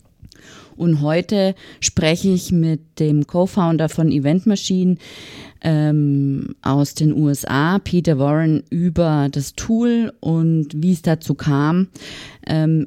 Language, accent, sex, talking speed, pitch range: German, German, female, 115 wpm, 150-185 Hz